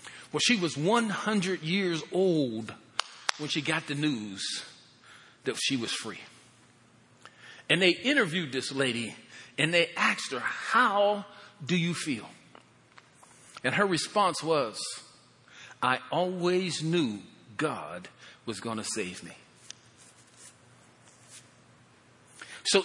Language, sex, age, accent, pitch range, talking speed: English, male, 40-59, American, 155-210 Hz, 110 wpm